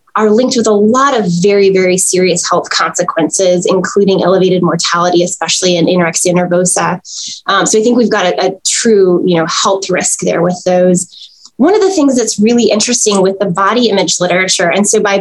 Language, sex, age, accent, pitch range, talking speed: English, female, 20-39, American, 185-225 Hz, 185 wpm